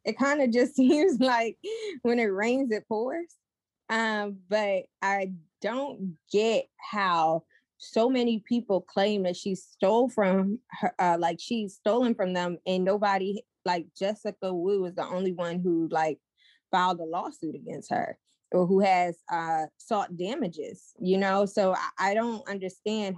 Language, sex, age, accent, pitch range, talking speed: English, female, 20-39, American, 190-240 Hz, 155 wpm